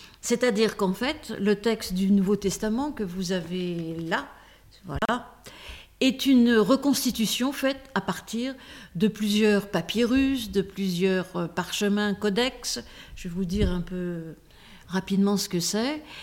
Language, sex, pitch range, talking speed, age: French, female, 190-230 Hz, 135 wpm, 50-69